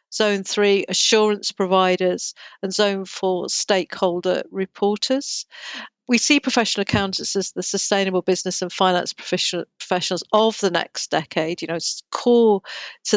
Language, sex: English, female